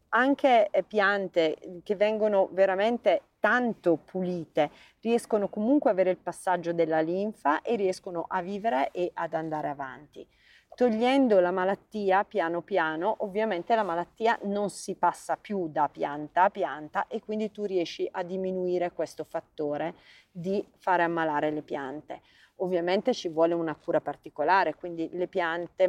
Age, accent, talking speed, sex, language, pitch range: 30-49, Italian, 140 wpm, female, English, 165-200 Hz